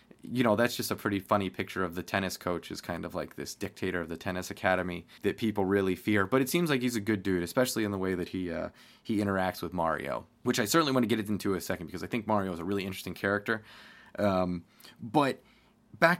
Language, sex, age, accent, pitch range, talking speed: English, male, 20-39, American, 95-120 Hz, 250 wpm